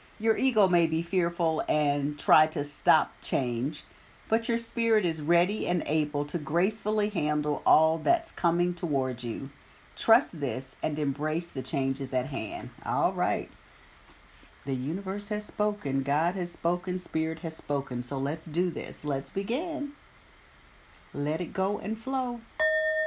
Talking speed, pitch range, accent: 145 wpm, 150-220 Hz, American